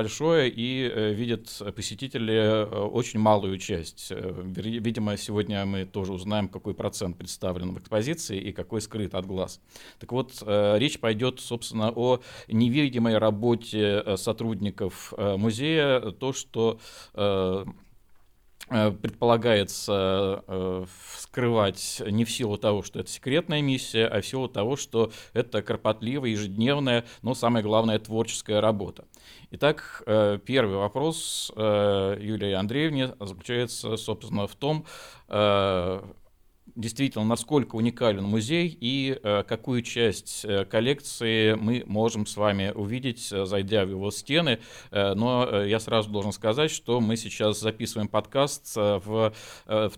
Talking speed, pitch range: 115 wpm, 100-120 Hz